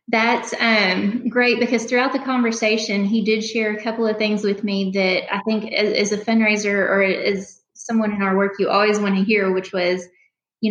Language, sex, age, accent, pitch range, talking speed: English, female, 20-39, American, 195-220 Hz, 205 wpm